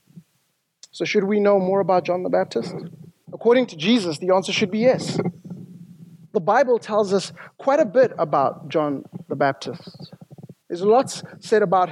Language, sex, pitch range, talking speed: English, male, 165-200 Hz, 160 wpm